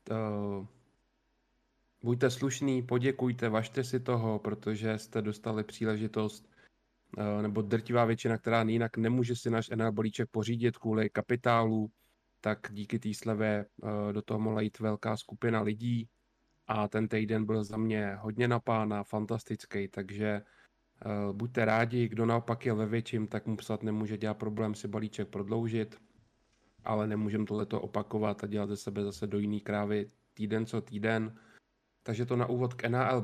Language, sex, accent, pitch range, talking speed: Czech, male, native, 105-120 Hz, 150 wpm